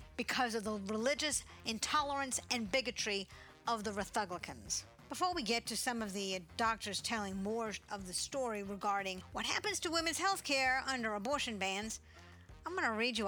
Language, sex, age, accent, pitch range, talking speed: English, female, 50-69, American, 215-285 Hz, 170 wpm